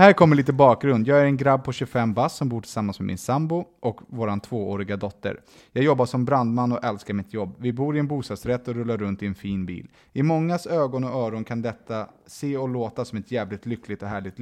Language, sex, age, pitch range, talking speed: English, male, 20-39, 105-125 Hz, 235 wpm